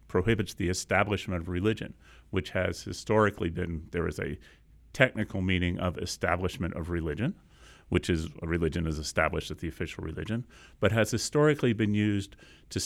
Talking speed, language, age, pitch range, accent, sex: 160 wpm, English, 40-59, 90-110 Hz, American, male